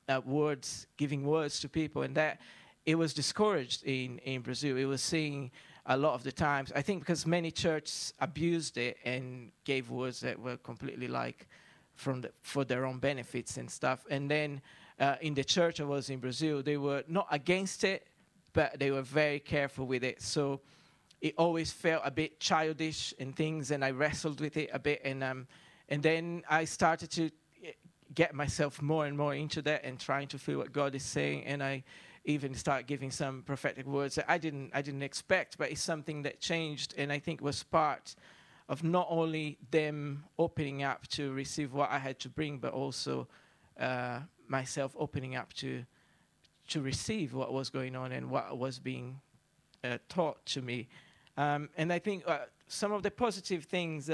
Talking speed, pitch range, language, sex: 190 wpm, 135-160 Hz, English, male